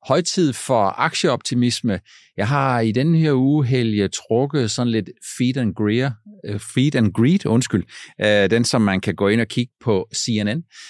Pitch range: 100-130 Hz